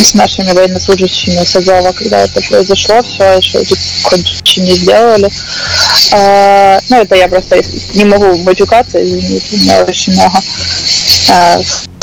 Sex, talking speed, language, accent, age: female, 140 wpm, Ukrainian, native, 20-39